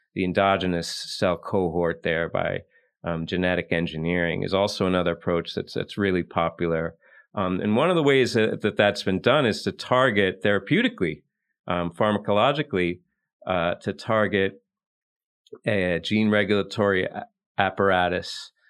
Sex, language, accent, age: male, English, American, 30-49